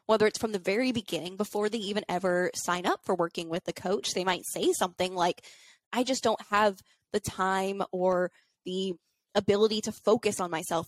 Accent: American